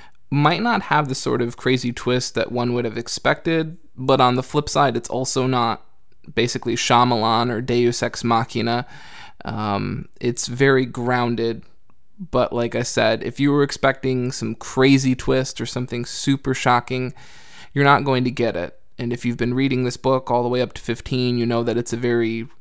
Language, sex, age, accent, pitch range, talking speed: English, male, 20-39, American, 120-140 Hz, 190 wpm